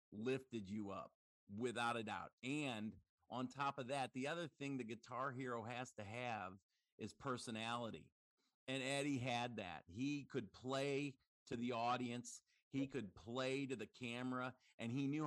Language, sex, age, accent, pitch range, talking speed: English, male, 50-69, American, 110-135 Hz, 160 wpm